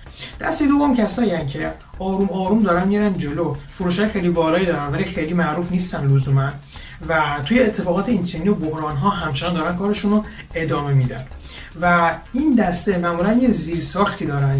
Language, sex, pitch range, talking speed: Persian, male, 145-200 Hz, 160 wpm